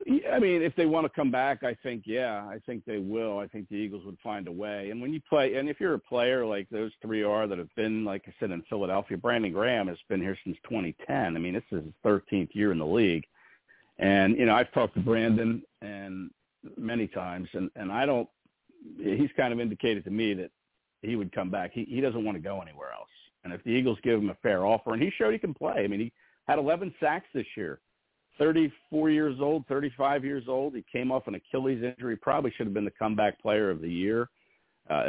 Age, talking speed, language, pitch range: 50-69, 240 wpm, English, 100-125 Hz